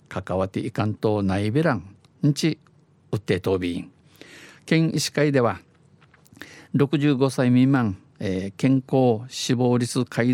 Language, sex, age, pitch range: Japanese, male, 50-69, 105-135 Hz